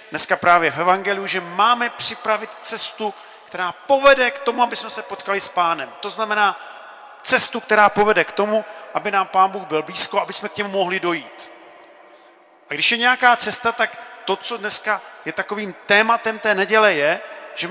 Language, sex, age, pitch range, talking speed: Czech, male, 40-59, 170-215 Hz, 180 wpm